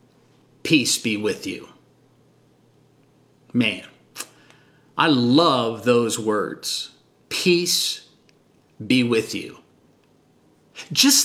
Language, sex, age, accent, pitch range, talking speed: English, male, 40-59, American, 130-185 Hz, 75 wpm